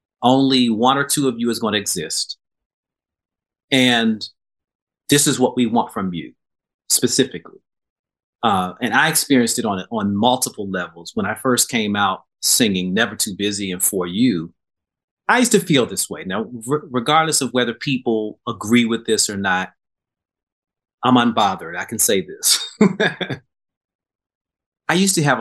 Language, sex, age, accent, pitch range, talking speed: English, male, 30-49, American, 110-135 Hz, 155 wpm